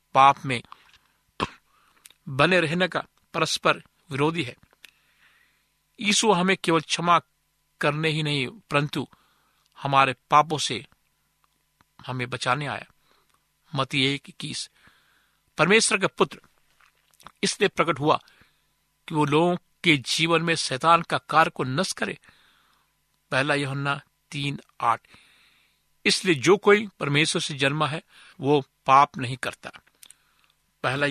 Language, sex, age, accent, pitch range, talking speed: Hindi, male, 50-69, native, 130-165 Hz, 110 wpm